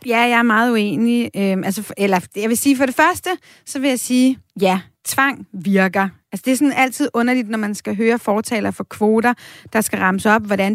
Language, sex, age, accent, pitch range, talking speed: Danish, female, 30-49, native, 205-245 Hz, 225 wpm